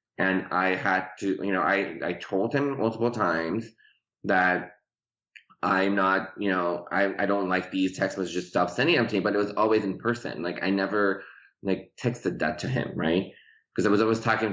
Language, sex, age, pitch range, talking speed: English, male, 20-39, 95-110 Hz, 200 wpm